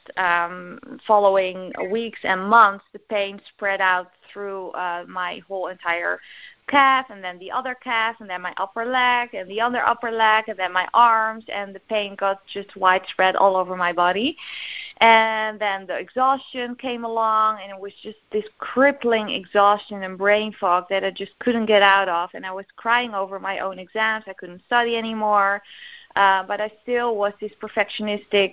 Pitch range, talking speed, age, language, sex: 190-225 Hz, 180 wpm, 20-39, English, female